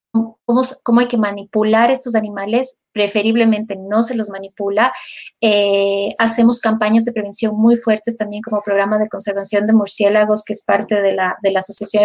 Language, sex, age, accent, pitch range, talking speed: Spanish, female, 30-49, Mexican, 210-235 Hz, 170 wpm